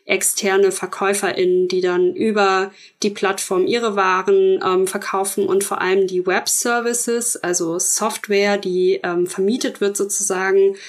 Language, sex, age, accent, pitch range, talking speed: German, female, 20-39, German, 195-240 Hz, 125 wpm